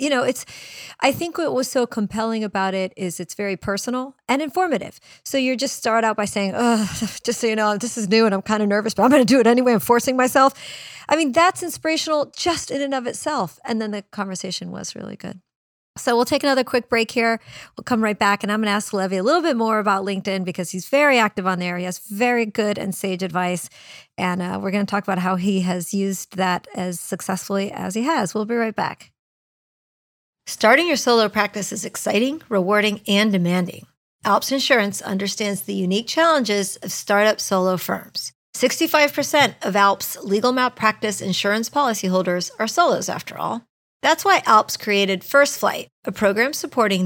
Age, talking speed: 40-59, 205 wpm